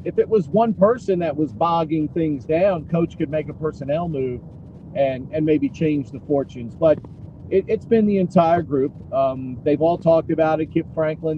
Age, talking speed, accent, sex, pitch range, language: 40-59, 195 wpm, American, male, 150-180 Hz, English